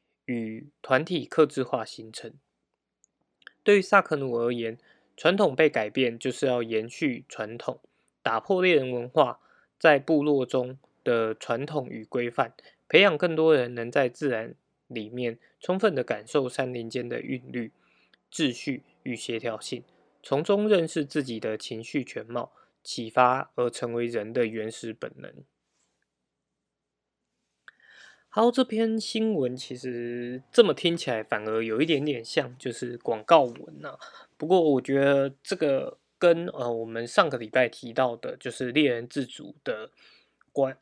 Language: Chinese